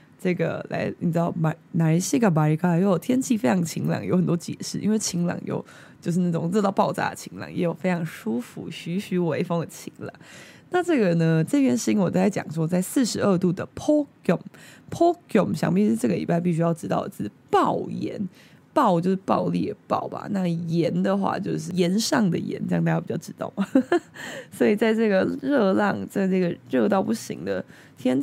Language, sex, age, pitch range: Chinese, female, 20-39, 170-220 Hz